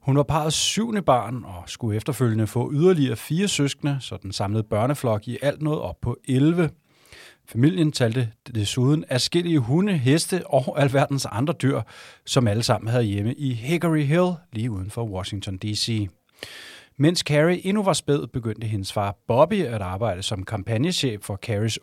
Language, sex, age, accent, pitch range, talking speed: Danish, male, 30-49, native, 110-145 Hz, 170 wpm